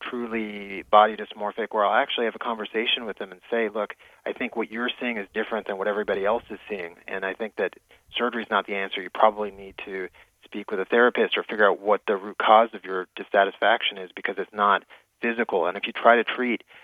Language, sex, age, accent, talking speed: English, male, 30-49, American, 230 wpm